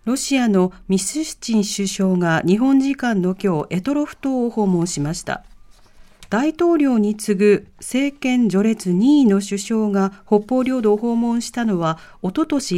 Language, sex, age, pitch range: Japanese, female, 40-59, 180-260 Hz